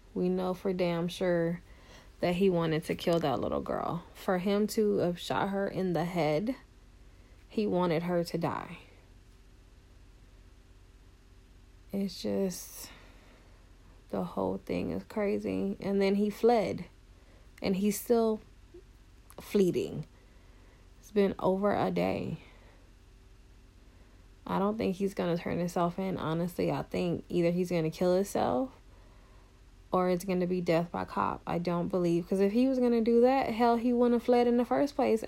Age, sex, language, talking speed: 10-29, female, English, 160 wpm